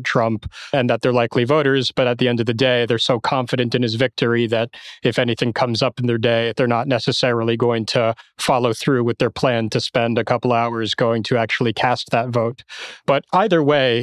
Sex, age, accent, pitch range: male, 30-49, American, 120-135 Hz